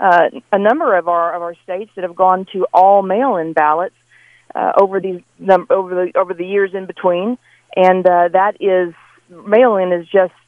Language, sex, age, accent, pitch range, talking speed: English, female, 40-59, American, 180-220 Hz, 195 wpm